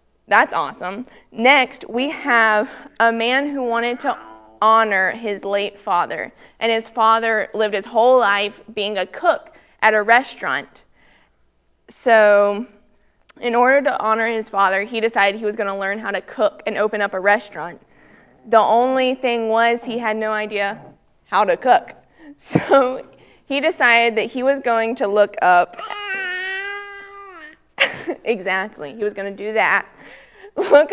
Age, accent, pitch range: 20-39, American, 205-255 Hz